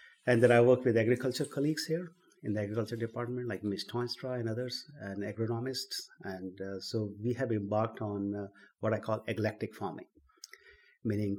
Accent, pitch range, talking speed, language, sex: Indian, 105-125 Hz, 175 wpm, English, male